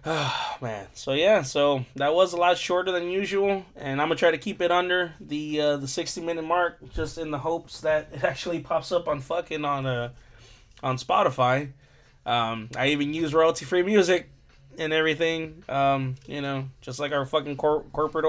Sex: male